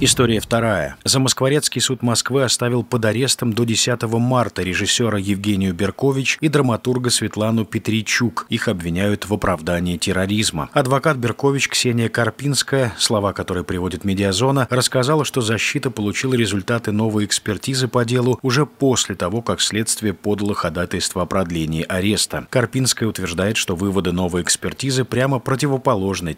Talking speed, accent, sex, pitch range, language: 130 wpm, native, male, 95-125 Hz, Russian